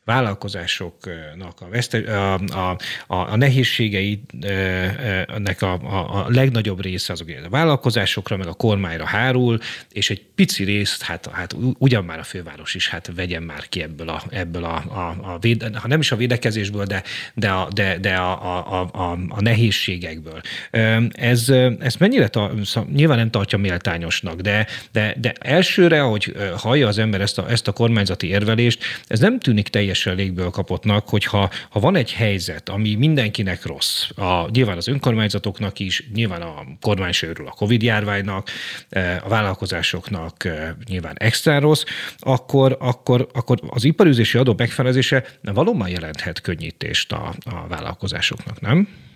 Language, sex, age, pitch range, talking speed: Hungarian, male, 30-49, 95-120 Hz, 145 wpm